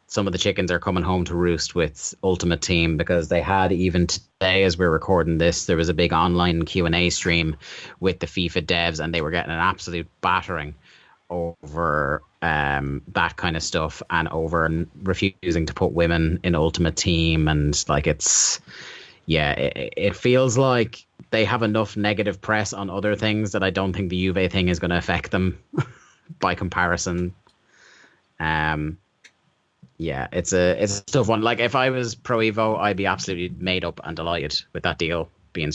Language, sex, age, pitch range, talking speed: English, male, 30-49, 85-105 Hz, 185 wpm